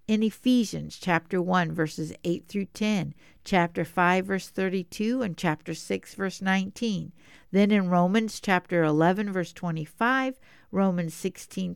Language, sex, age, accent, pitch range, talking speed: English, female, 50-69, American, 175-230 Hz, 135 wpm